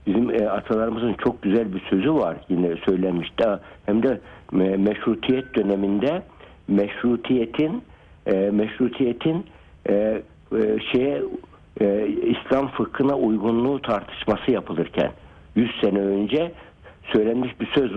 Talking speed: 100 wpm